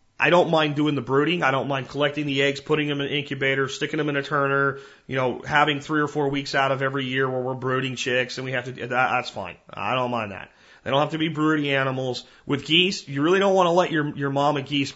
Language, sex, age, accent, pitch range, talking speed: English, male, 30-49, American, 115-145 Hz, 270 wpm